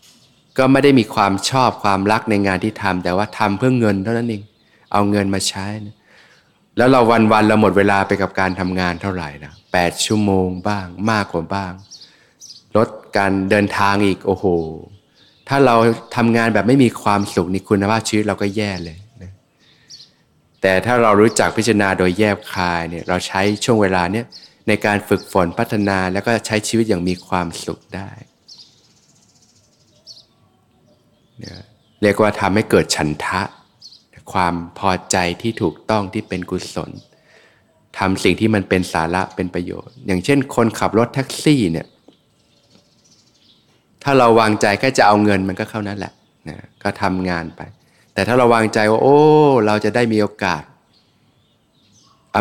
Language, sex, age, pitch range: Thai, male, 20-39, 95-110 Hz